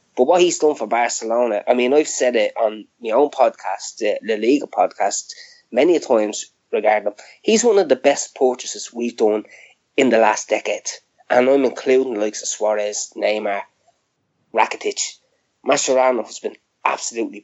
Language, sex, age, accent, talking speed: English, male, 20-39, Irish, 170 wpm